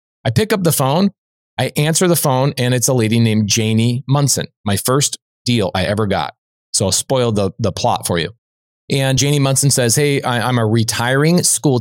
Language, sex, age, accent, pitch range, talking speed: English, male, 20-39, American, 110-145 Hz, 200 wpm